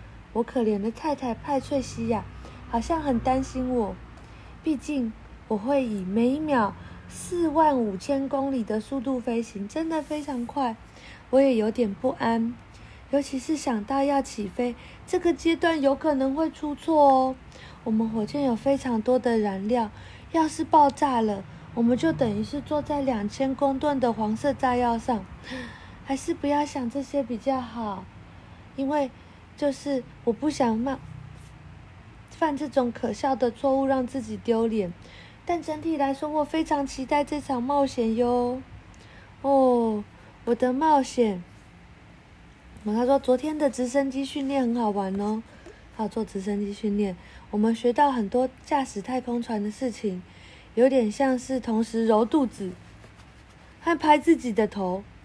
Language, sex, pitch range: Chinese, female, 225-285 Hz